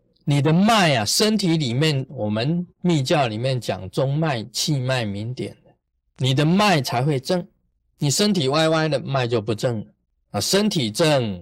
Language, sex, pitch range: Chinese, male, 120-175 Hz